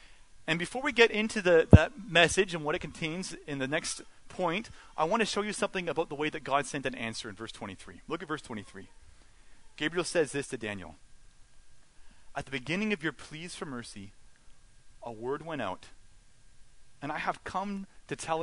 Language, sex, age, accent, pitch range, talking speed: English, male, 30-49, American, 120-180 Hz, 190 wpm